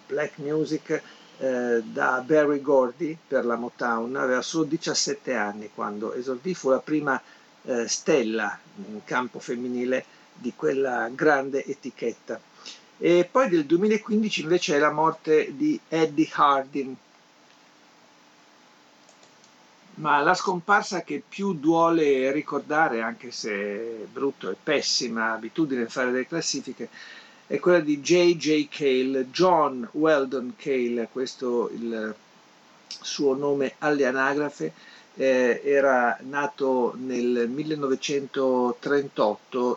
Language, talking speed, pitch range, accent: Italian, 110 wpm, 125-155 Hz, native